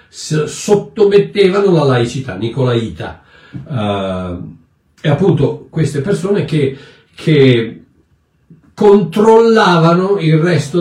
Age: 60-79